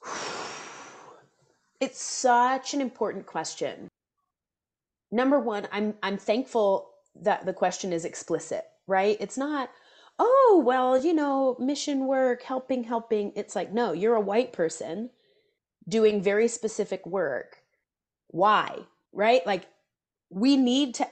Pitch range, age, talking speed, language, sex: 185-240 Hz, 30-49, 120 wpm, English, female